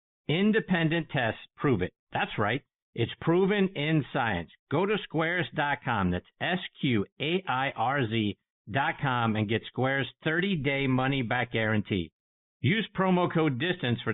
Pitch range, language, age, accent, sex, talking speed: 120-170 Hz, English, 50-69, American, male, 115 wpm